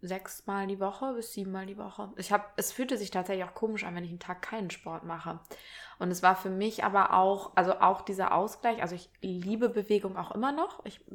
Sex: female